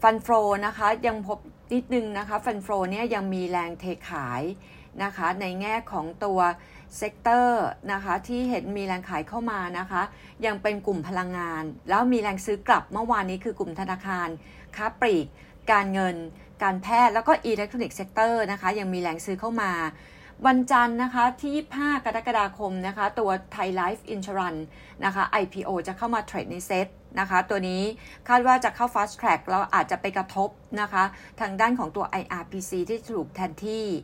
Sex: female